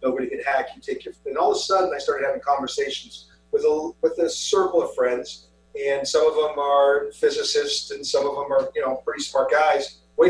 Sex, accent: male, American